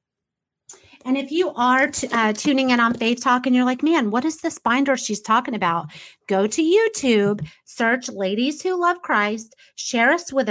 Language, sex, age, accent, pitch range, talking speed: English, female, 30-49, American, 205-275 Hz, 185 wpm